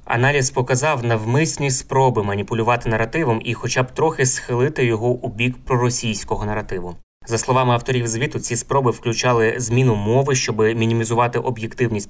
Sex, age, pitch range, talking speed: male, 20-39, 115-130 Hz, 140 wpm